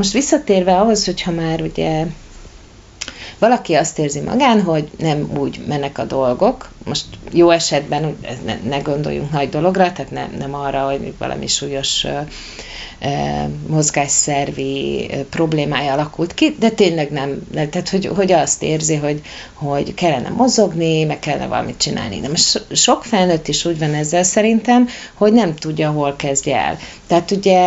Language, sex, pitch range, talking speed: Hungarian, female, 145-205 Hz, 140 wpm